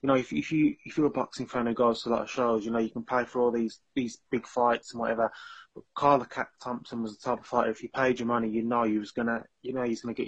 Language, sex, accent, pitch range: English, male, British, 115-130 Hz